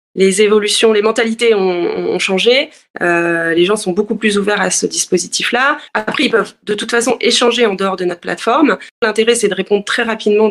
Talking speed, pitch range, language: 200 wpm, 190-230 Hz, French